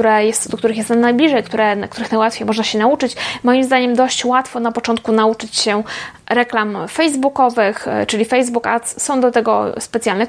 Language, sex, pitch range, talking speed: Polish, female, 220-265 Hz, 165 wpm